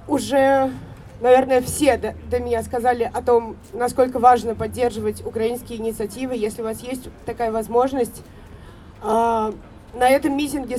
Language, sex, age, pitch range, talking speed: Russian, female, 20-39, 225-270 Hz, 120 wpm